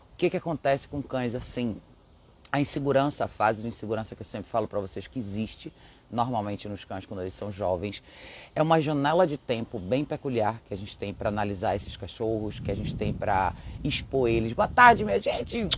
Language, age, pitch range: Portuguese, 30-49, 105-135 Hz